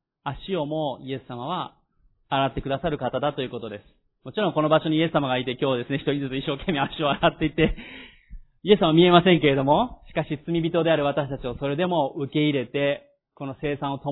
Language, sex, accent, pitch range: Japanese, male, native, 135-170 Hz